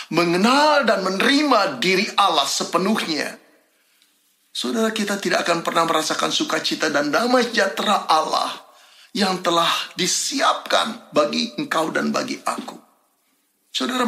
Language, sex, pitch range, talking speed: Indonesian, male, 175-260 Hz, 110 wpm